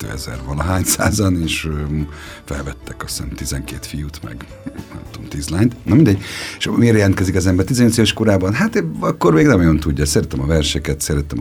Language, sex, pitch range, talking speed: Hungarian, male, 75-95 Hz, 170 wpm